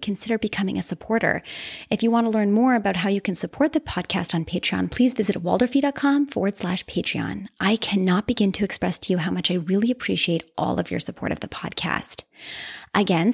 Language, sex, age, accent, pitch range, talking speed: English, female, 20-39, American, 180-225 Hz, 205 wpm